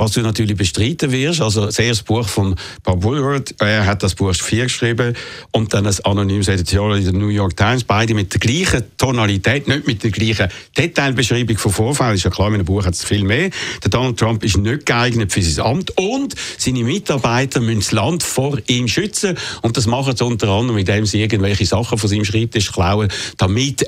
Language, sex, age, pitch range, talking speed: German, male, 60-79, 100-125 Hz, 210 wpm